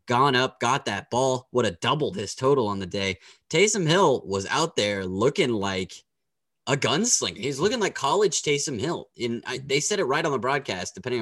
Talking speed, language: 205 wpm, English